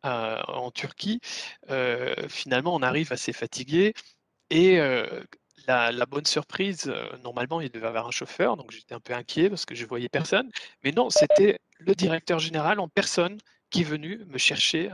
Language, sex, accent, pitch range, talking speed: French, male, French, 130-175 Hz, 185 wpm